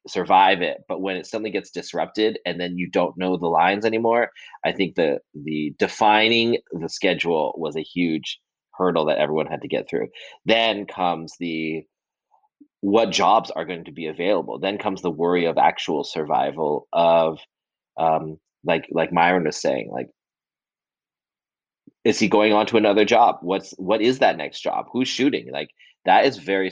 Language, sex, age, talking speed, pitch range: English, male, 30-49, 175 wpm, 85-105 Hz